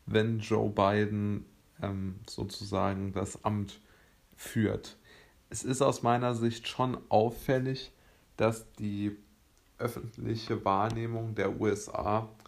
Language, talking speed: German, 100 wpm